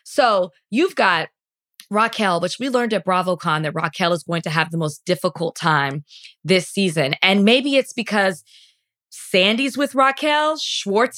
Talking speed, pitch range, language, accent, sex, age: 155 wpm, 180-245 Hz, English, American, female, 20-39